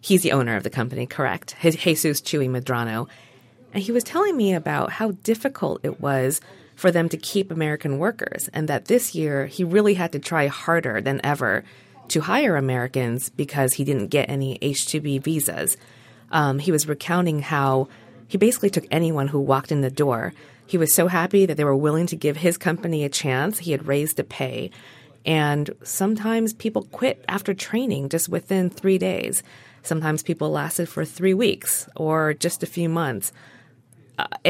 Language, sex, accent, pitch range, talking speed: English, female, American, 135-170 Hz, 180 wpm